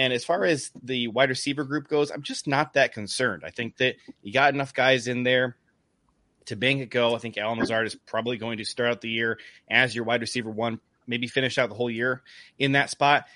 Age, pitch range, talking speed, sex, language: 30-49, 115-135 Hz, 240 wpm, male, English